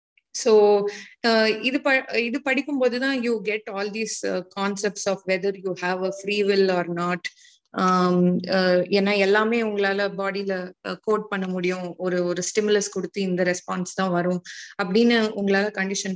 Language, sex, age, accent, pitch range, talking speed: Tamil, female, 20-39, native, 185-230 Hz, 125 wpm